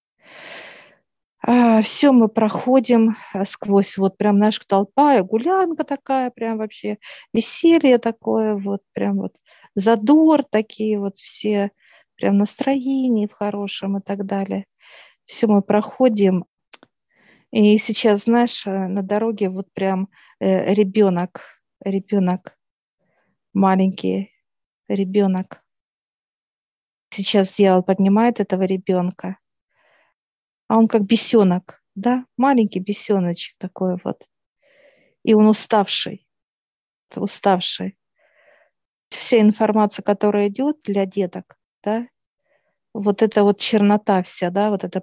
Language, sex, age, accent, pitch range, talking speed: Russian, female, 40-59, native, 190-220 Hz, 100 wpm